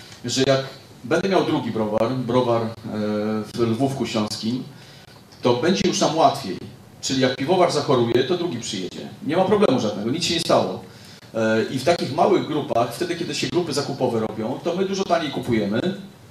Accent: native